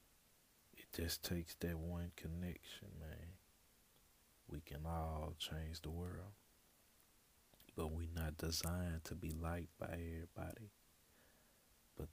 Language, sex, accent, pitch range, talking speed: English, male, American, 80-90 Hz, 115 wpm